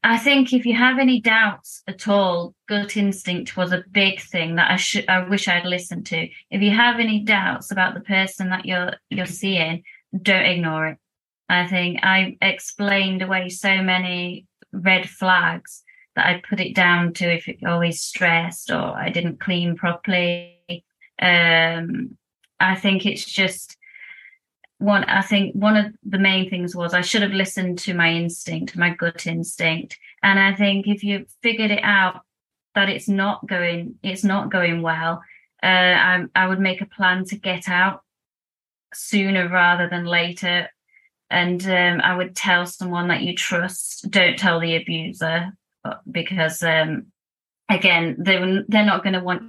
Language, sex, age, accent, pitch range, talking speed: English, female, 30-49, British, 175-200 Hz, 165 wpm